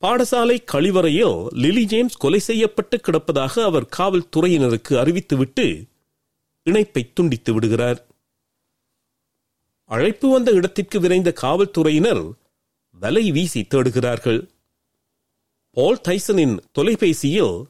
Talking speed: 65 wpm